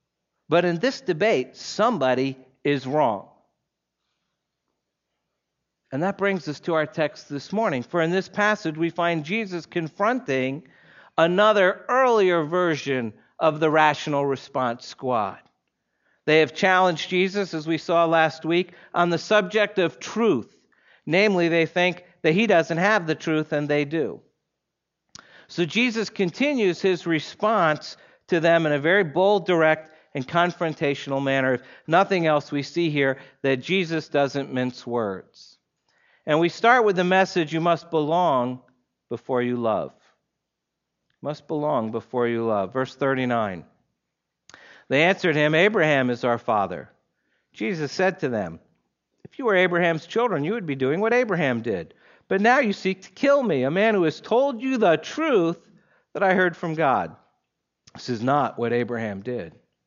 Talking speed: 150 wpm